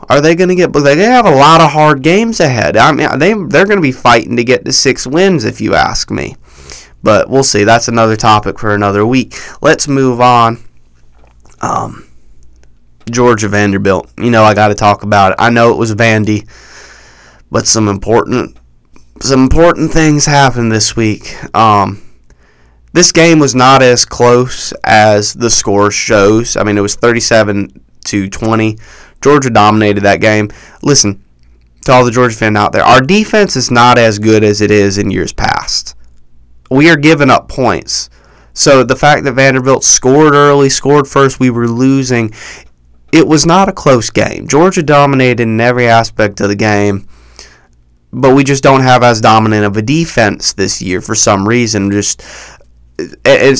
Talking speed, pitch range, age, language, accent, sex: 175 wpm, 100-135 Hz, 20-39, English, American, male